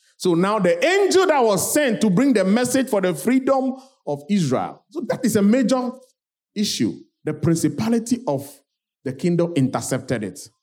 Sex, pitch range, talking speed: male, 135-205 Hz, 165 wpm